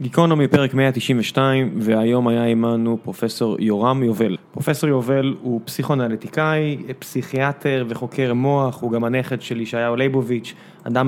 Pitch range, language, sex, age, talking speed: 115-140 Hz, Hebrew, male, 20-39, 125 wpm